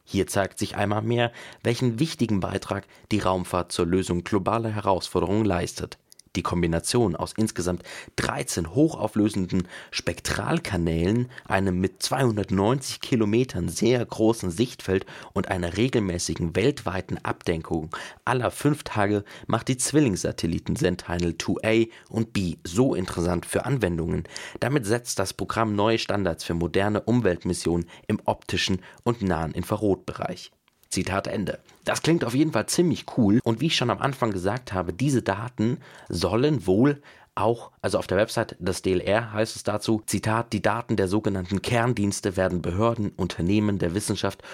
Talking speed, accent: 140 wpm, German